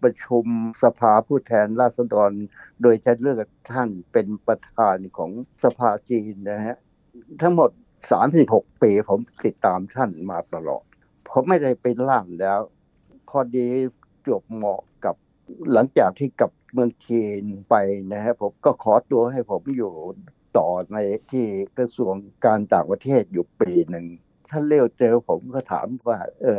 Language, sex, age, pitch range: Thai, male, 60-79, 105-130 Hz